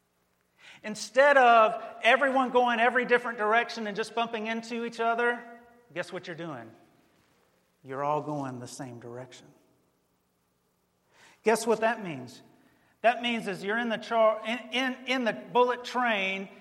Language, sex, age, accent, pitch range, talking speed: English, male, 40-59, American, 200-255 Hz, 145 wpm